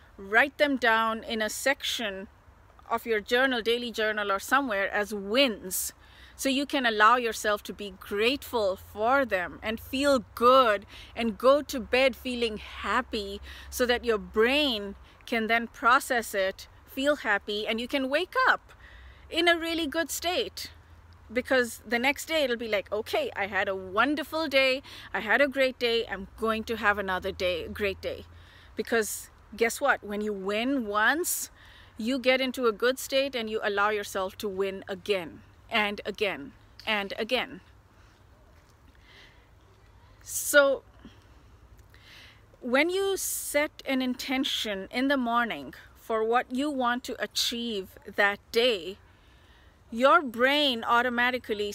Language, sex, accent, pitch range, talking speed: English, female, Indian, 205-260 Hz, 145 wpm